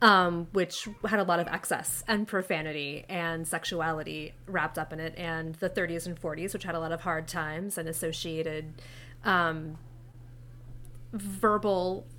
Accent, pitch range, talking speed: American, 155-185 Hz, 155 wpm